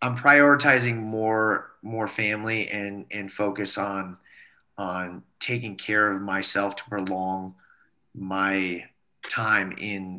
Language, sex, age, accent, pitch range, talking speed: English, male, 30-49, American, 95-105 Hz, 110 wpm